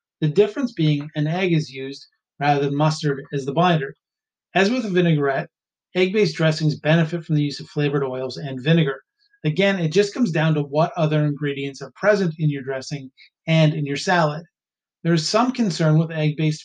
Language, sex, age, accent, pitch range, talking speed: English, male, 30-49, American, 145-170 Hz, 185 wpm